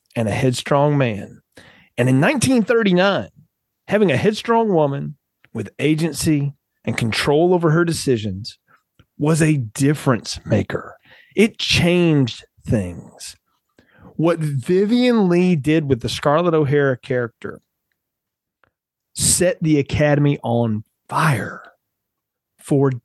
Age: 40-59